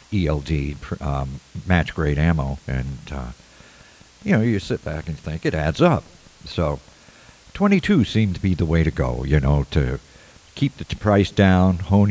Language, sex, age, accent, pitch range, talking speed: English, male, 60-79, American, 75-100 Hz, 165 wpm